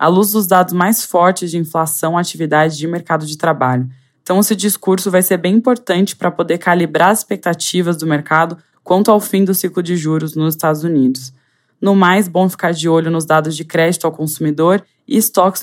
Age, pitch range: 20-39, 155-185 Hz